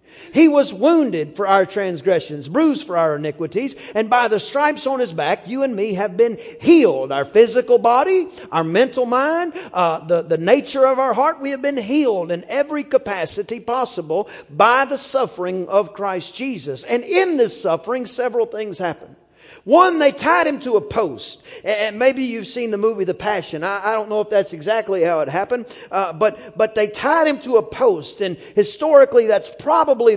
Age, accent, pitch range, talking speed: 40-59, American, 195-285 Hz, 190 wpm